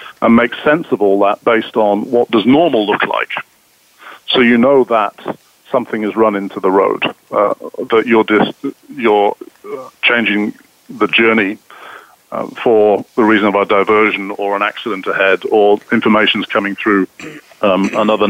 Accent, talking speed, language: British, 155 wpm, English